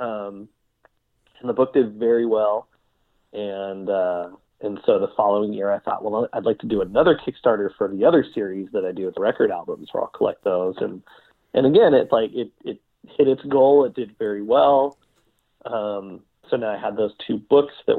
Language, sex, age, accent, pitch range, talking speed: English, male, 40-59, American, 105-155 Hz, 205 wpm